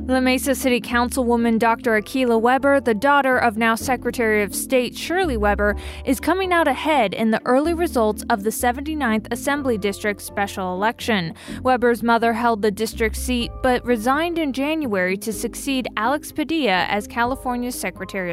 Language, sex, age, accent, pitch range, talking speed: English, female, 20-39, American, 220-270 Hz, 155 wpm